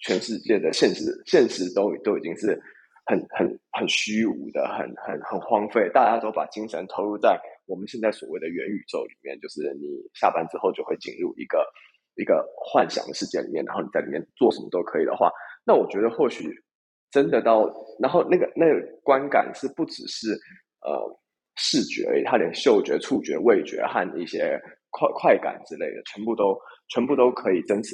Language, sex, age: Chinese, male, 20-39